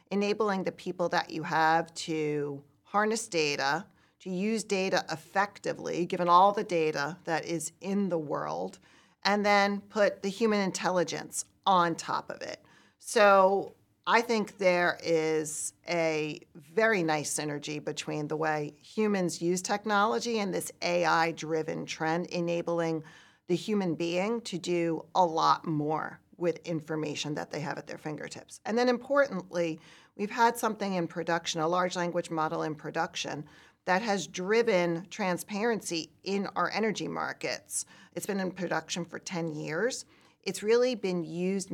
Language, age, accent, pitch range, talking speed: English, 40-59, American, 160-200 Hz, 145 wpm